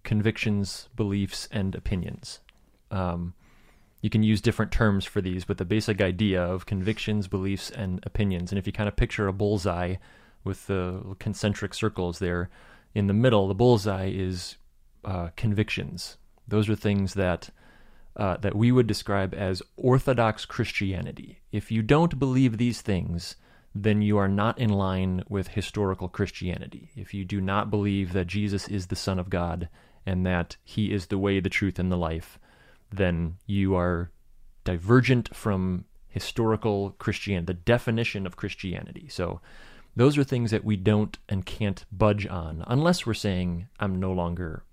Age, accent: 30-49, American